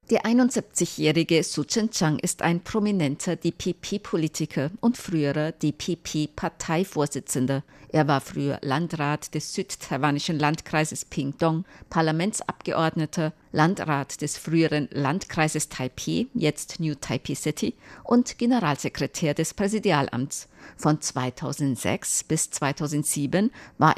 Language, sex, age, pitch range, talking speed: German, female, 50-69, 150-190 Hz, 100 wpm